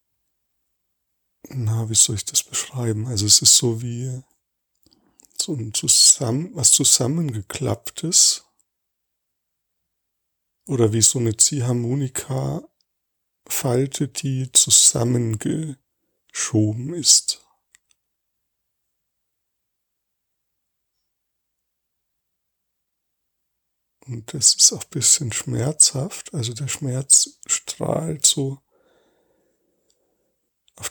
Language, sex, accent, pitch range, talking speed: German, male, German, 100-135 Hz, 70 wpm